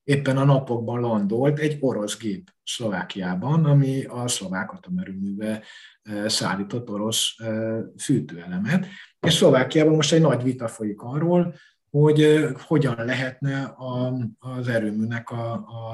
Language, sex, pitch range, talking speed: Hungarian, male, 110-145 Hz, 110 wpm